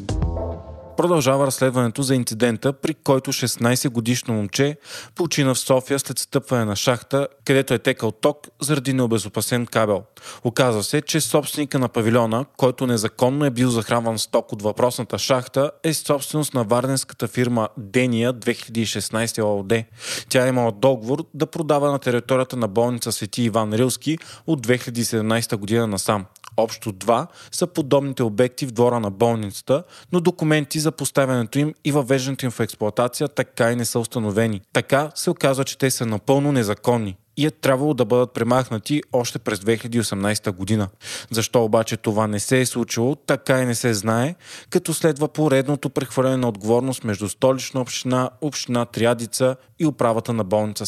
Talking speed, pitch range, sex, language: 155 wpm, 115-140 Hz, male, Bulgarian